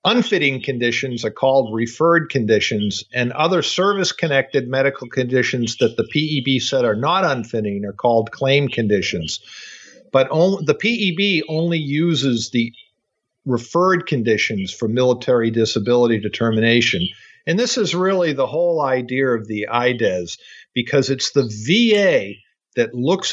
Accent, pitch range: American, 120-165 Hz